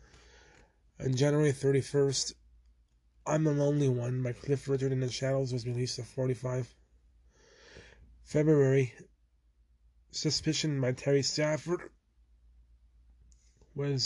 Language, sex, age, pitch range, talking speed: English, male, 20-39, 120-140 Hz, 100 wpm